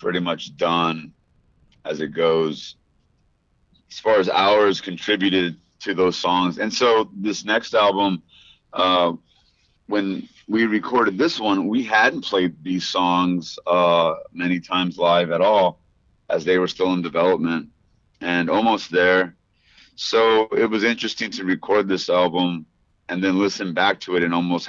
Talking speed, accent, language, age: 150 wpm, American, English, 30-49